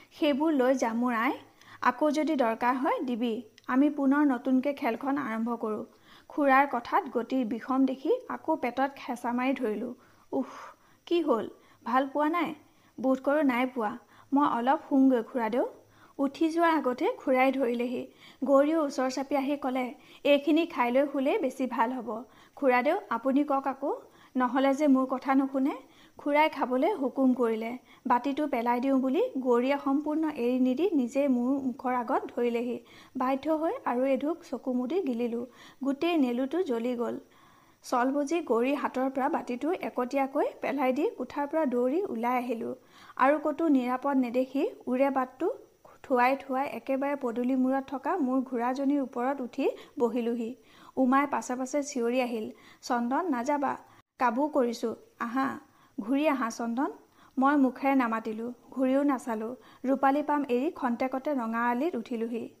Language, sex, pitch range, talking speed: Hindi, female, 245-290 Hz, 110 wpm